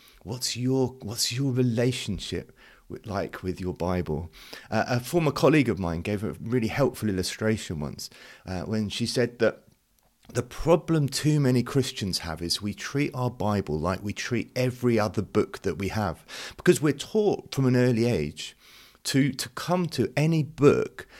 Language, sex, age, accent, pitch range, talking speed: English, male, 30-49, British, 105-140 Hz, 170 wpm